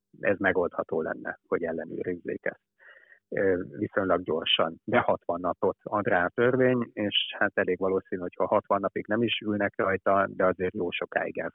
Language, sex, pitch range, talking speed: Hungarian, male, 90-100 Hz, 155 wpm